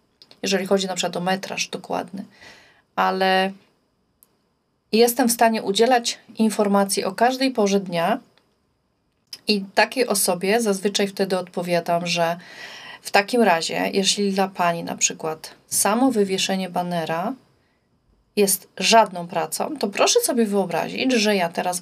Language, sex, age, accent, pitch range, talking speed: Polish, female, 40-59, native, 180-225 Hz, 125 wpm